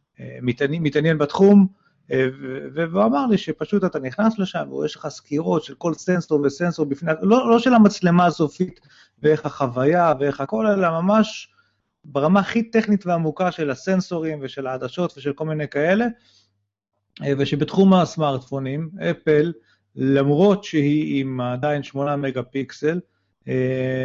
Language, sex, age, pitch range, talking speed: Hebrew, male, 30-49, 135-170 Hz, 130 wpm